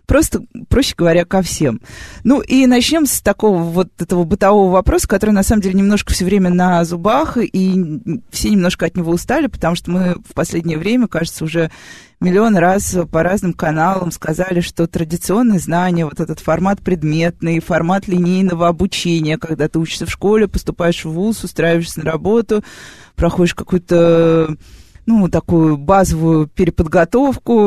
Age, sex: 20-39, female